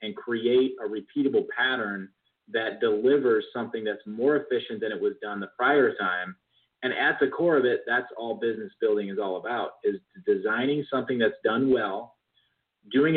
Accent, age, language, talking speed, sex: American, 30-49, English, 175 wpm, male